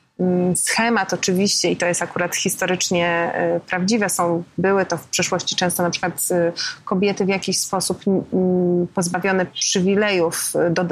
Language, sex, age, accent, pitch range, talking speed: Polish, female, 30-49, native, 175-195 Hz, 125 wpm